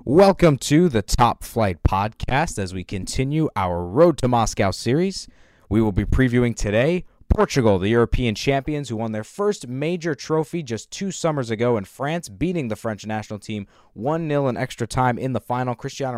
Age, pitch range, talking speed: 20-39, 100-130 Hz, 180 wpm